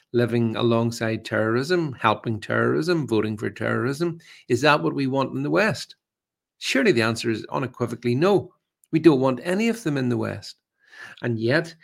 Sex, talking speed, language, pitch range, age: male, 165 wpm, English, 115-155 Hz, 50-69